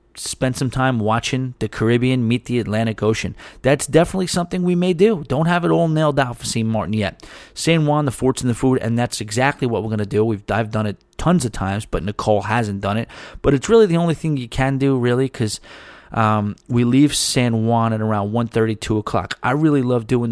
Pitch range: 110-130 Hz